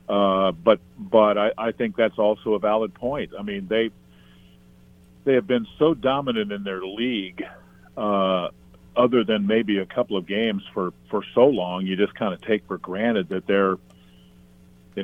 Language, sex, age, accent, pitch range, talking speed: English, male, 50-69, American, 90-115 Hz, 175 wpm